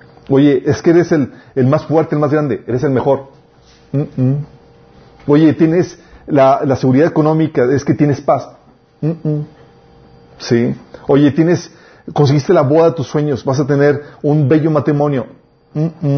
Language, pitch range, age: Spanish, 135-180 Hz, 40-59